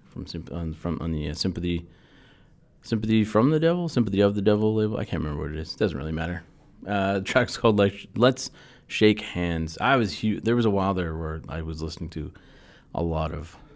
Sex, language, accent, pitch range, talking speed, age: male, English, American, 85-105 Hz, 210 wpm, 30-49